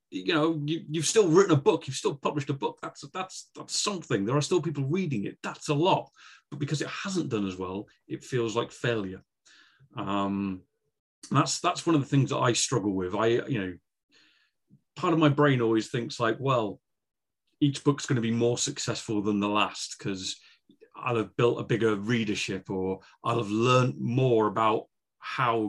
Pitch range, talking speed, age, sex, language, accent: 105-145 Hz, 190 wpm, 30-49, male, English, British